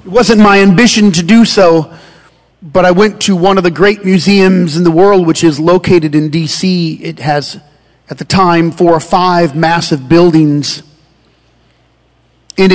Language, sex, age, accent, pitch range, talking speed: English, male, 40-59, American, 150-180 Hz, 165 wpm